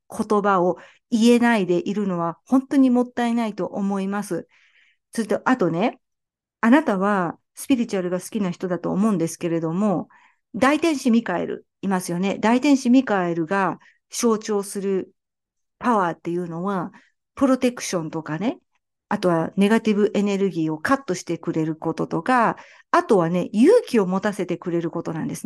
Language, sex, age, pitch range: Japanese, female, 50-69, 175-240 Hz